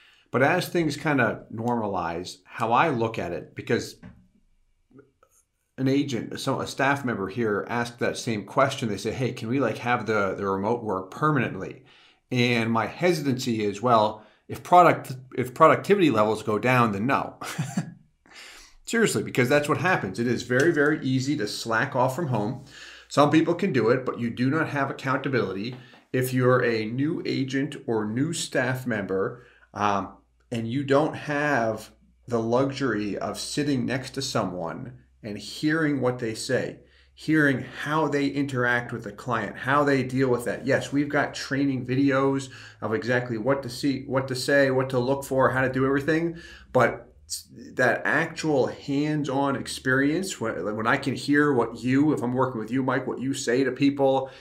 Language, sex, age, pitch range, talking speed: English, male, 40-59, 115-140 Hz, 175 wpm